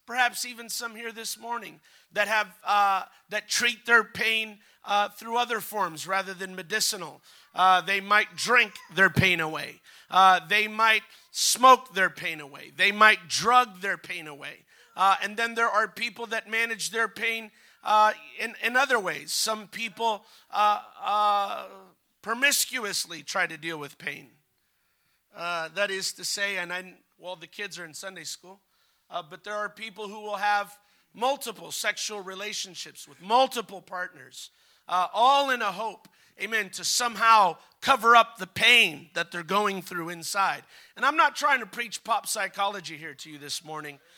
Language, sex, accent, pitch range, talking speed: English, male, American, 185-230 Hz, 165 wpm